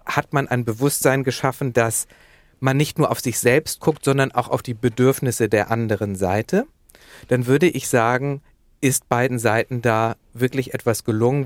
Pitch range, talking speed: 120-140 Hz, 170 wpm